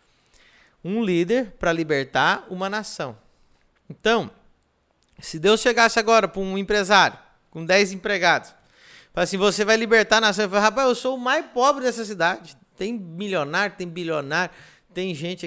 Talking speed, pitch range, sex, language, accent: 145 wpm, 155-195 Hz, male, Portuguese, Brazilian